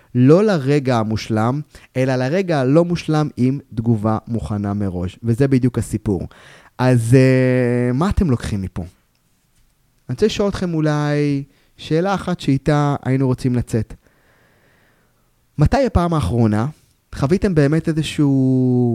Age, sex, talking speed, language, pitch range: 20-39, male, 115 wpm, Hebrew, 115-155 Hz